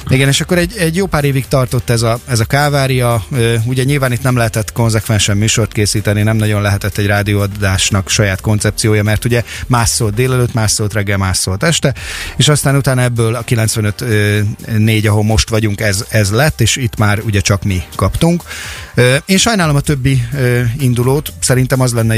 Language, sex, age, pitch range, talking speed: Hungarian, male, 30-49, 100-120 Hz, 180 wpm